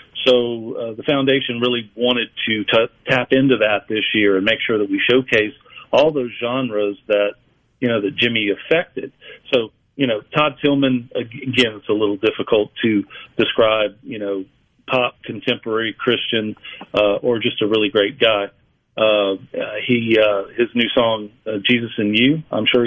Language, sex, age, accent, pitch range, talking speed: English, male, 40-59, American, 110-130 Hz, 170 wpm